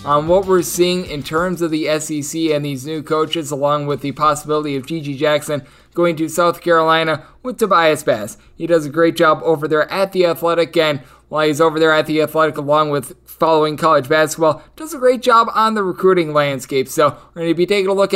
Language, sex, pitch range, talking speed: English, male, 155-180 Hz, 220 wpm